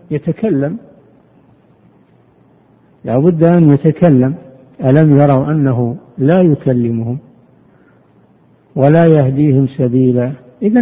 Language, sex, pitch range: Arabic, male, 130-170 Hz